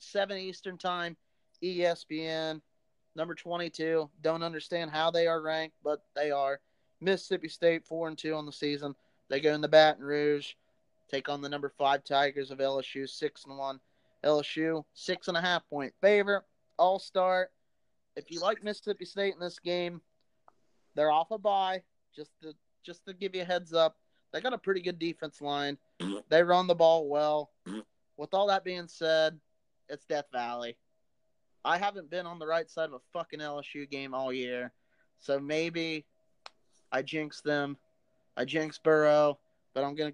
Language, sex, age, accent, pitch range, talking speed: English, male, 30-49, American, 145-175 Hz, 170 wpm